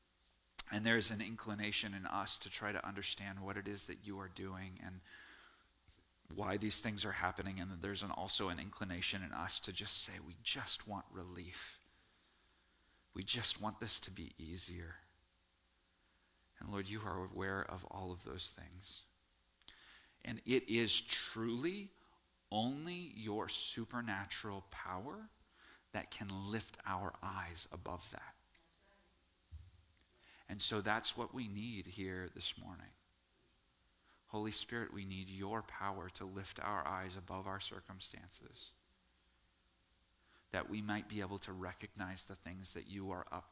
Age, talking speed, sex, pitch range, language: 40-59, 145 wpm, male, 90-110 Hz, English